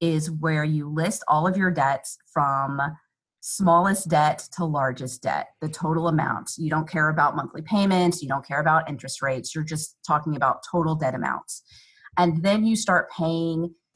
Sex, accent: female, American